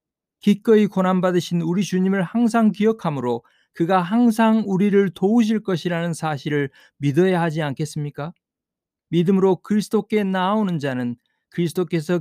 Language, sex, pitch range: Korean, male, 160-200 Hz